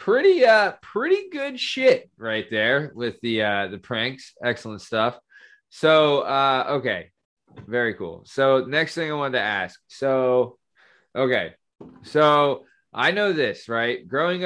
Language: English